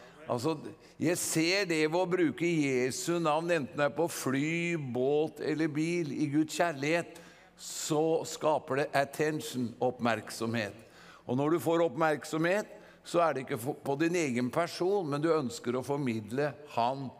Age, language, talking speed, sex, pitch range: 50-69, English, 155 wpm, male, 135-175 Hz